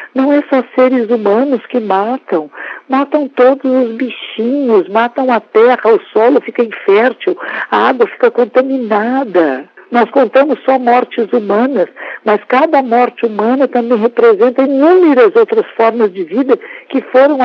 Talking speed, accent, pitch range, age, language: 140 wpm, Brazilian, 215-275 Hz, 60-79, Portuguese